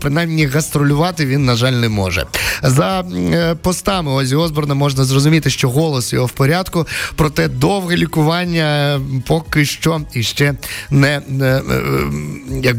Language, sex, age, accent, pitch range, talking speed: Ukrainian, male, 20-39, native, 125-160 Hz, 125 wpm